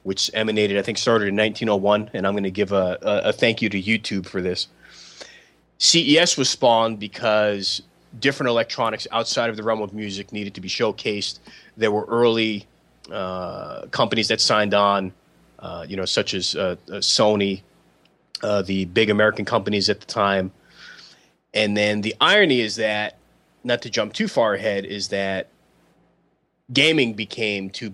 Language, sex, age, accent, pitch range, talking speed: English, male, 30-49, American, 95-110 Hz, 170 wpm